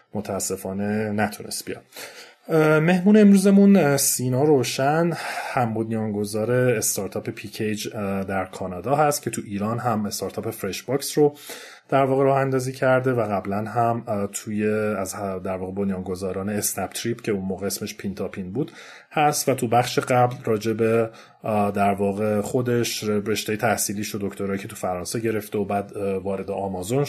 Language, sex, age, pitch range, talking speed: Persian, male, 30-49, 105-130 Hz, 145 wpm